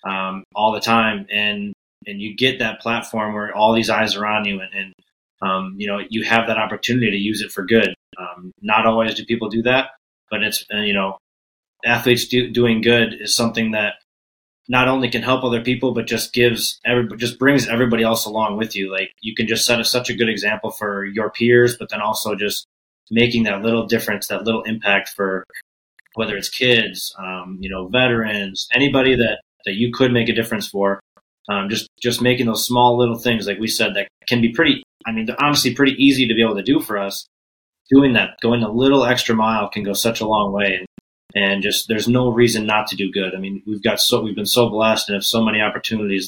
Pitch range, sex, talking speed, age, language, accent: 100-115 Hz, male, 220 wpm, 20-39, English, American